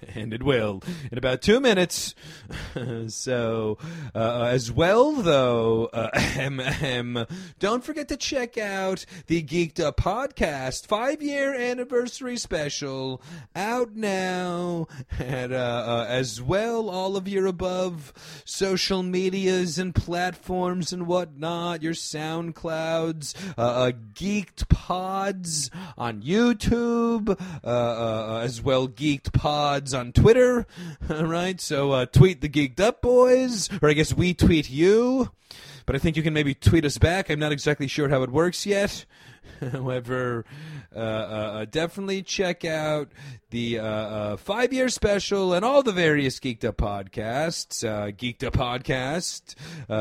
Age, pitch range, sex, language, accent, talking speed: 30-49, 125-185 Hz, male, English, American, 135 wpm